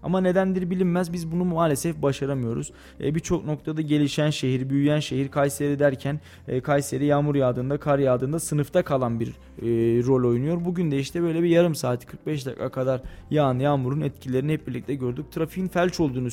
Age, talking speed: 20-39, 160 wpm